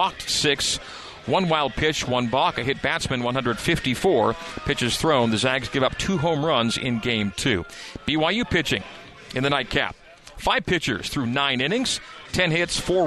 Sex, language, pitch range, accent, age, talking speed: male, English, 125-155 Hz, American, 40-59, 165 wpm